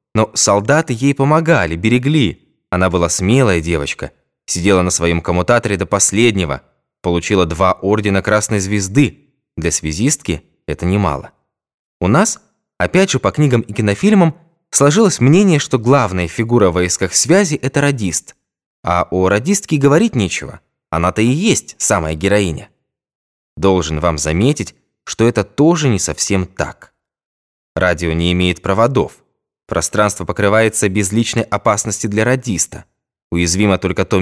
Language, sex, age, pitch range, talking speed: Russian, male, 20-39, 90-130 Hz, 130 wpm